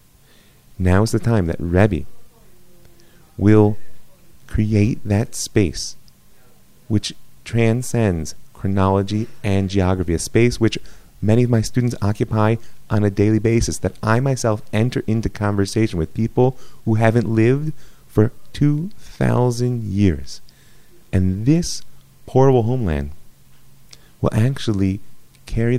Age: 30-49